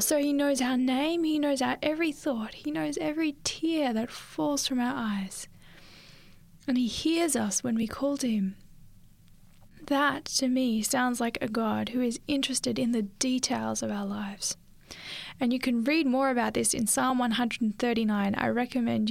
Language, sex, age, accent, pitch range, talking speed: English, female, 10-29, Australian, 220-285 Hz, 175 wpm